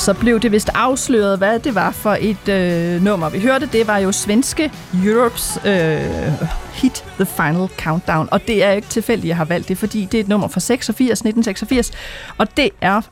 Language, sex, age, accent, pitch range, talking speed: Danish, female, 30-49, native, 185-225 Hz, 205 wpm